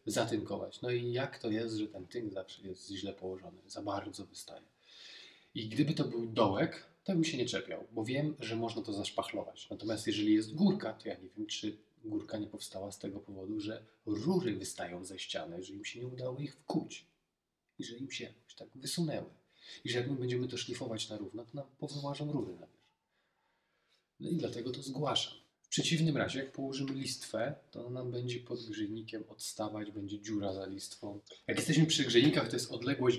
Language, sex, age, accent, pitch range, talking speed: Polish, male, 40-59, native, 110-140 Hz, 195 wpm